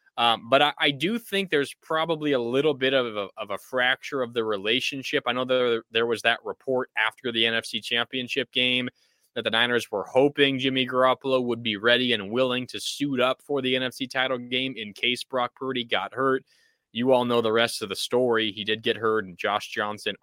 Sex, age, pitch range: male, 20-39, 120-140 Hz